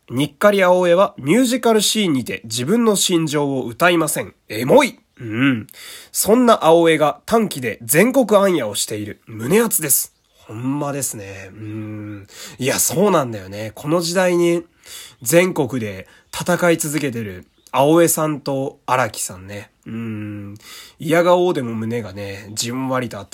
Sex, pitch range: male, 115-185 Hz